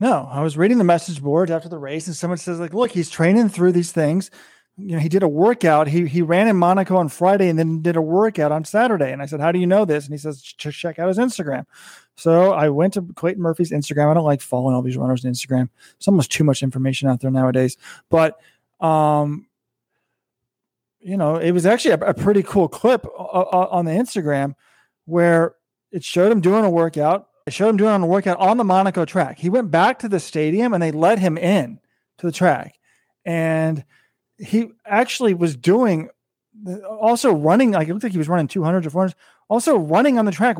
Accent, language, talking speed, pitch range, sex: American, English, 220 wpm, 155-195 Hz, male